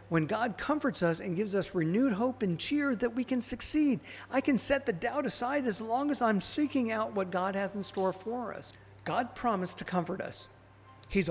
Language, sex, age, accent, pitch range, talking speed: English, male, 50-69, American, 180-240 Hz, 210 wpm